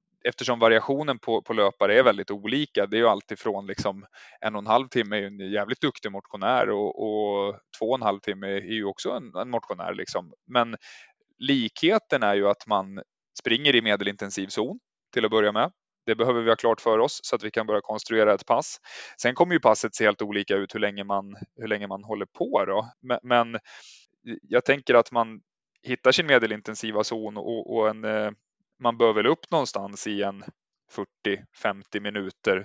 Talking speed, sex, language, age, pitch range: 195 wpm, male, Swedish, 20-39, 100-120 Hz